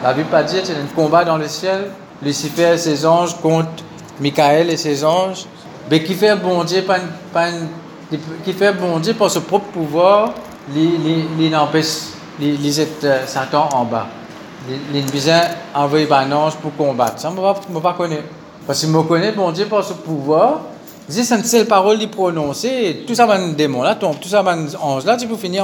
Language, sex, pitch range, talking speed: Italian, male, 155-195 Hz, 185 wpm